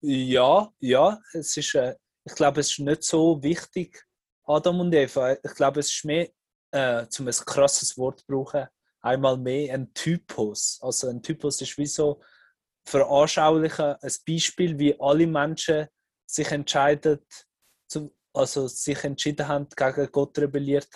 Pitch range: 135-150 Hz